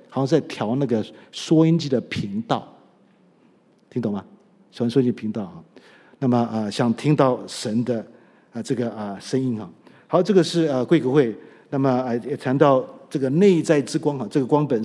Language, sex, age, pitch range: Chinese, male, 50-69, 120-165 Hz